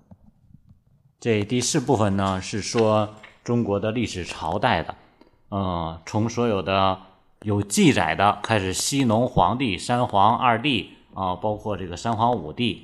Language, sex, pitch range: Chinese, male, 90-110 Hz